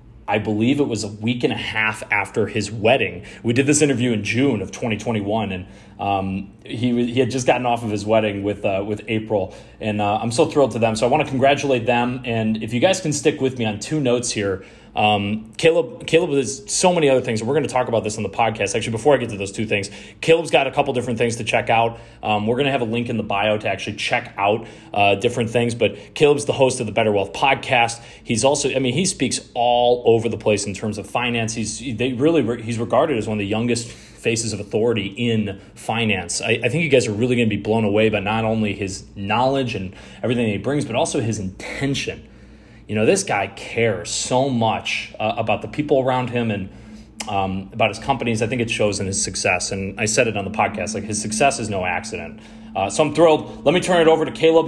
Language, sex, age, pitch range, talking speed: English, male, 30-49, 105-130 Hz, 245 wpm